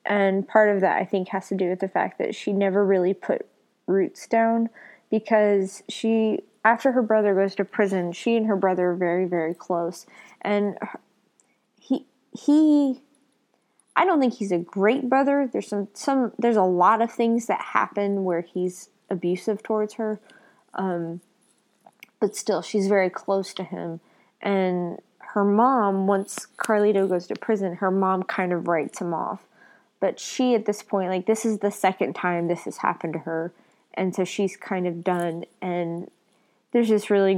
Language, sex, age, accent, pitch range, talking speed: English, female, 20-39, American, 180-215 Hz, 175 wpm